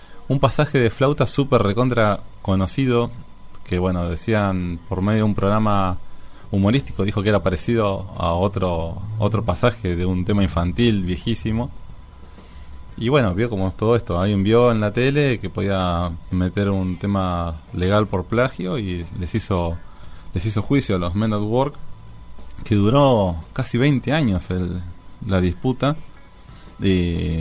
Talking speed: 150 wpm